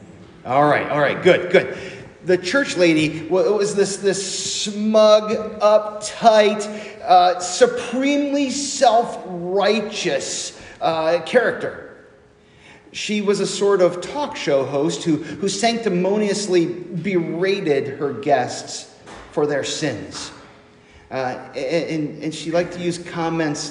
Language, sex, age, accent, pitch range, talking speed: English, male, 40-59, American, 155-215 Hz, 115 wpm